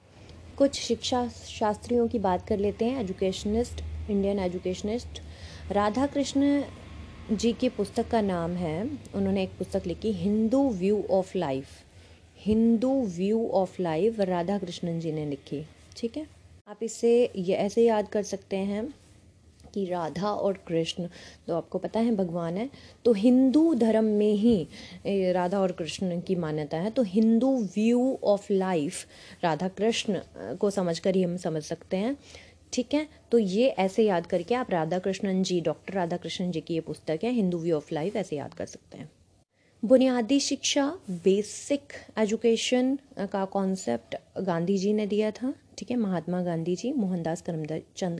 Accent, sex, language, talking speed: native, female, Hindi, 160 wpm